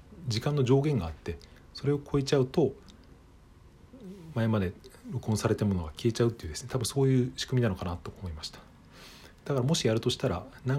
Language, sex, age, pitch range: Japanese, male, 40-59, 95-130 Hz